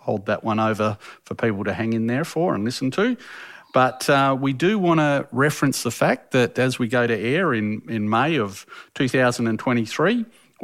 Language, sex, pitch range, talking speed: English, male, 110-135 Hz, 185 wpm